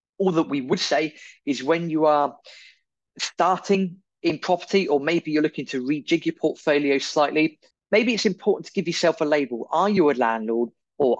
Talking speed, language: 180 wpm, English